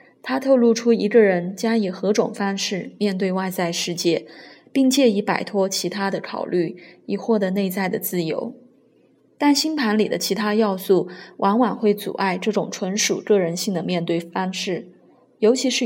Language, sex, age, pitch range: Chinese, female, 20-39, 185-230 Hz